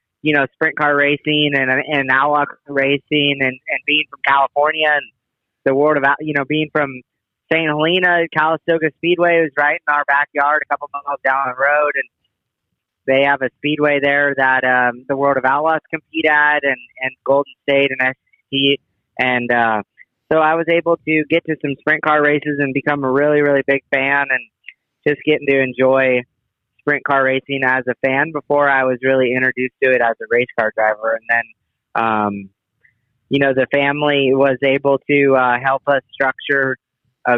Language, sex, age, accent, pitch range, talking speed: English, male, 30-49, American, 125-145 Hz, 185 wpm